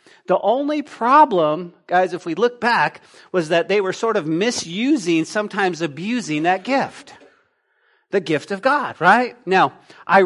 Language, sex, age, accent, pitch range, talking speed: English, male, 40-59, American, 185-250 Hz, 150 wpm